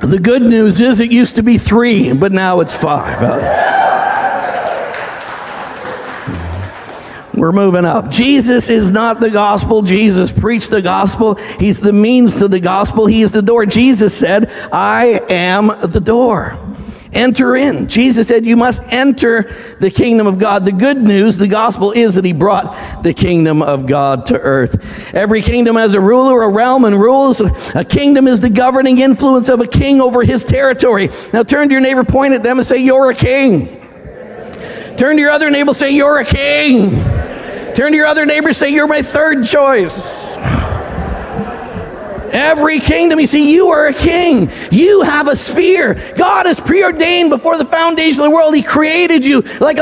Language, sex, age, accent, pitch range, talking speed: English, male, 50-69, American, 220-295 Hz, 175 wpm